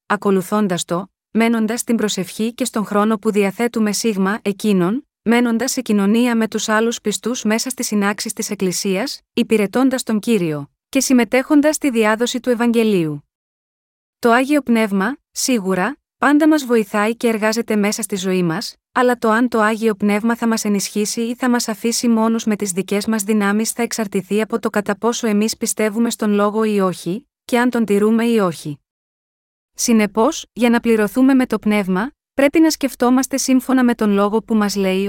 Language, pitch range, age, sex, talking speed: Greek, 205-245 Hz, 20-39, female, 170 wpm